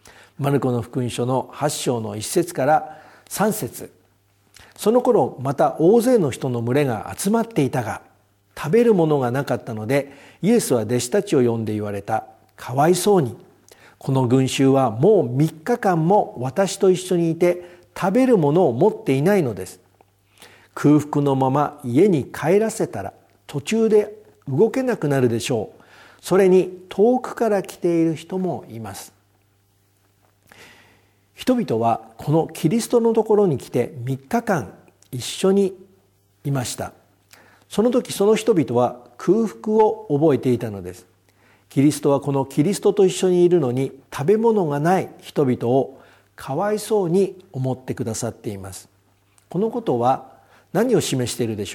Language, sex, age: Japanese, male, 50-69